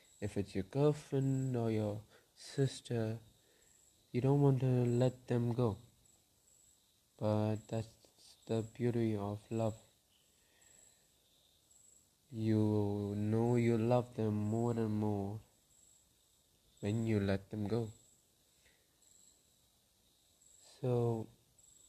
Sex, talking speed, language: male, 95 wpm, English